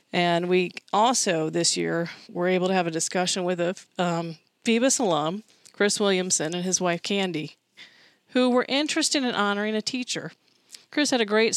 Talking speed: 165 wpm